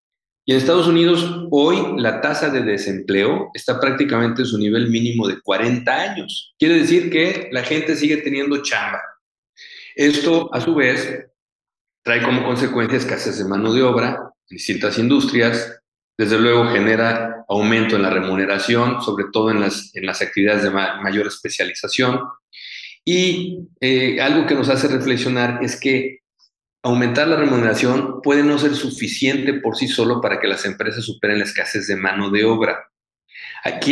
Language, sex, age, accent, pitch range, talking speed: Spanish, male, 50-69, Mexican, 110-145 Hz, 155 wpm